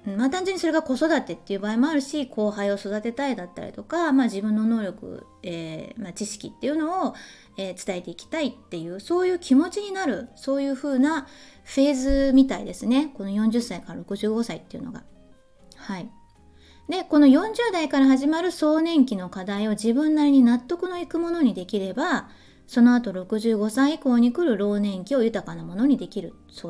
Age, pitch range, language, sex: 20-39, 205-280 Hz, Japanese, female